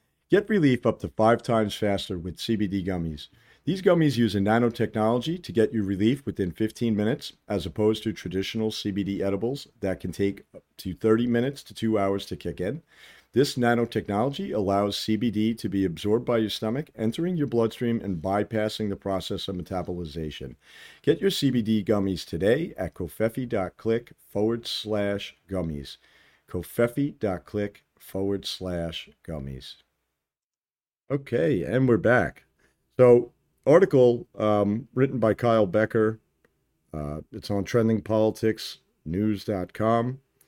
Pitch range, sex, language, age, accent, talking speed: 100-120 Hz, male, English, 50-69, American, 130 wpm